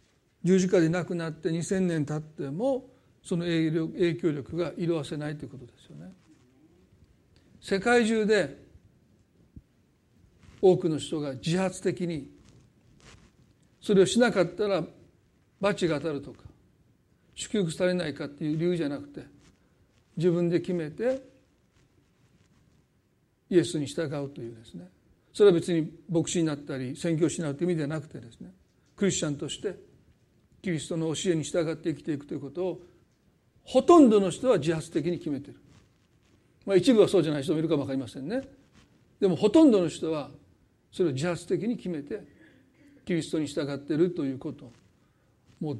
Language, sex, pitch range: Japanese, male, 145-190 Hz